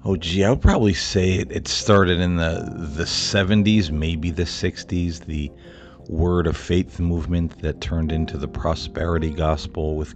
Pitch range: 75-90 Hz